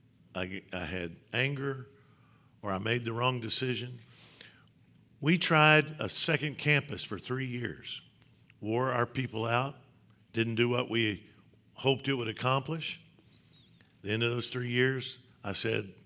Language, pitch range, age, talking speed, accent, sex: English, 110-130 Hz, 50-69, 140 wpm, American, male